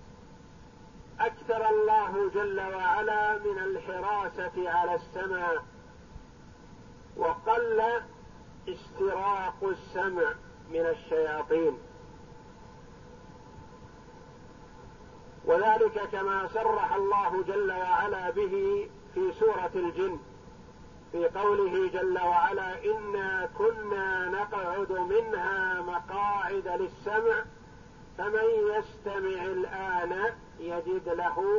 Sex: male